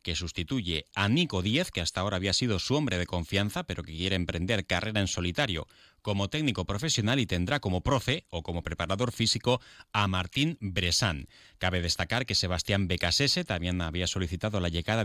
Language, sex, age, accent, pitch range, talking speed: Spanish, male, 30-49, Spanish, 90-115 Hz, 180 wpm